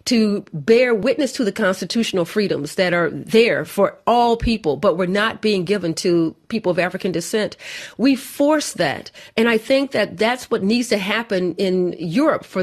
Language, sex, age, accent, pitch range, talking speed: English, female, 40-59, American, 195-255 Hz, 180 wpm